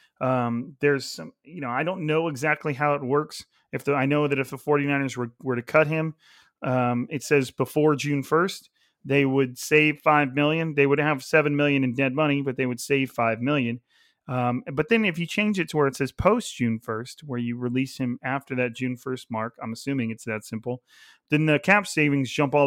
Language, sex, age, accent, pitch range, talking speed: English, male, 30-49, American, 125-150 Hz, 220 wpm